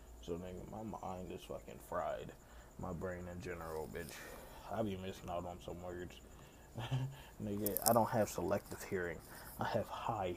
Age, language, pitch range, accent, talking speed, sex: 20-39, English, 70-95 Hz, American, 160 wpm, male